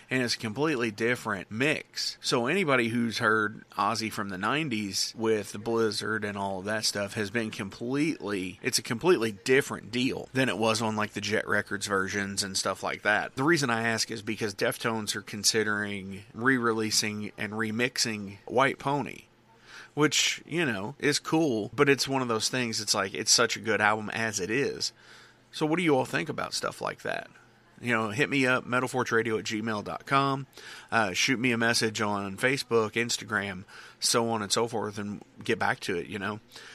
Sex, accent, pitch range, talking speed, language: male, American, 105-125 Hz, 190 wpm, English